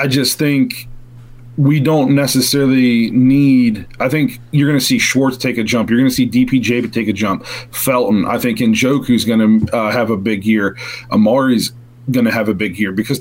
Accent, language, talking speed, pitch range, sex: American, English, 210 wpm, 115-135 Hz, male